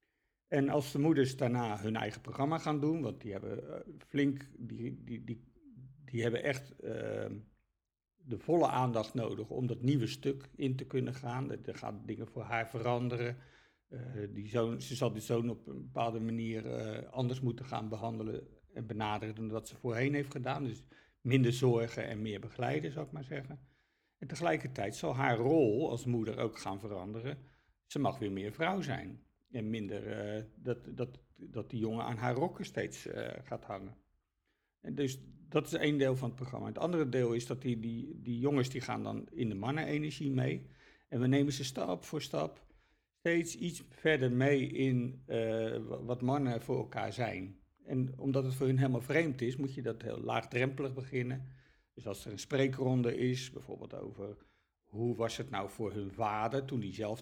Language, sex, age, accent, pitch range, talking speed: Dutch, male, 50-69, Dutch, 110-135 Hz, 190 wpm